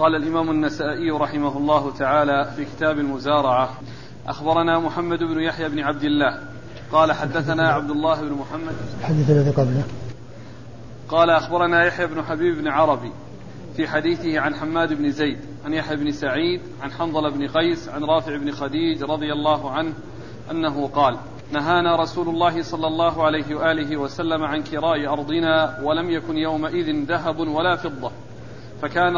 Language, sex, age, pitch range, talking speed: Arabic, male, 40-59, 145-170 Hz, 145 wpm